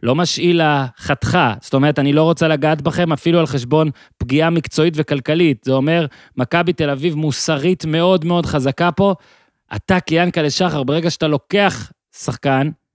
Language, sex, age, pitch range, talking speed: Hebrew, male, 30-49, 140-175 Hz, 155 wpm